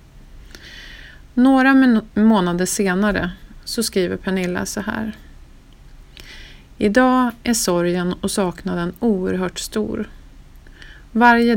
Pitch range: 175-220 Hz